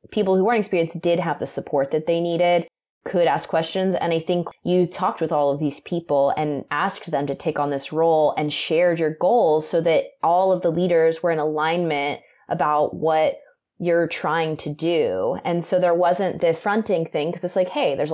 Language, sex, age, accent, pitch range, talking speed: English, female, 20-39, American, 155-190 Hz, 210 wpm